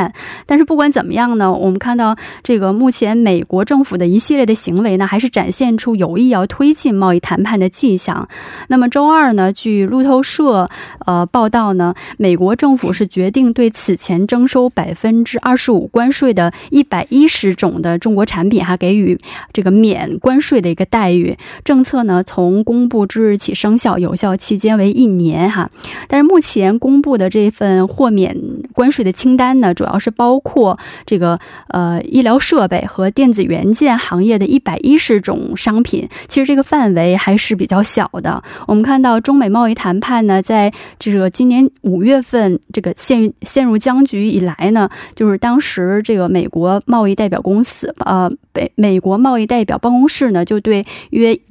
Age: 20-39